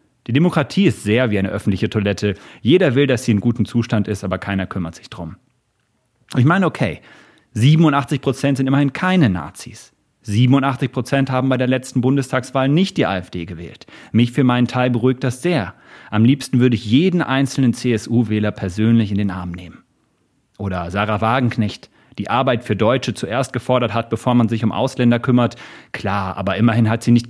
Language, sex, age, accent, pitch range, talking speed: German, male, 40-59, German, 105-130 Hz, 180 wpm